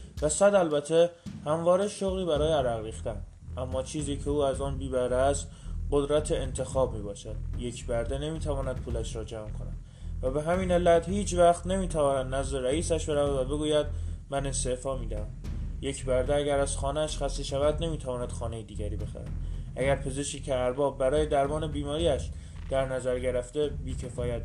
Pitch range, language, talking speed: 125-160 Hz, Persian, 155 wpm